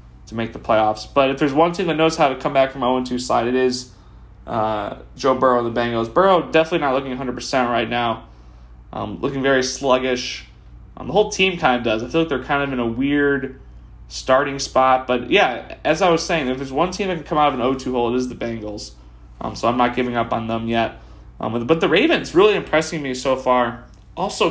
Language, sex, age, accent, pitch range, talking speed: English, male, 20-39, American, 115-140 Hz, 235 wpm